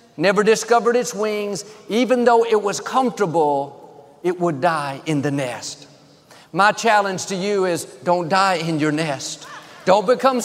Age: 50-69